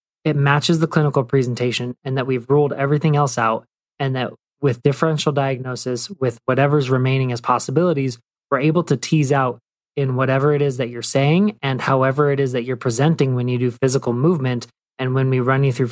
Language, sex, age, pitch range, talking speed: English, male, 20-39, 130-155 Hz, 195 wpm